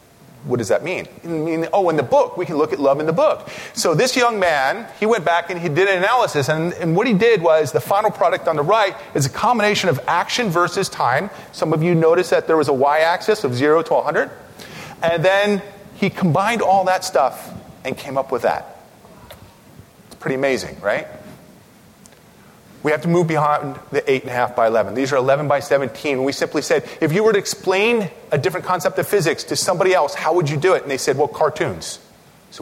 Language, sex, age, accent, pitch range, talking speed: English, male, 30-49, American, 135-190 Hz, 225 wpm